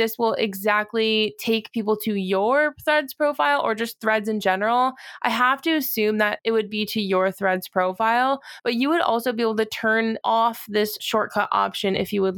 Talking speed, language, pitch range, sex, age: 200 wpm, English, 210-245 Hz, female, 20-39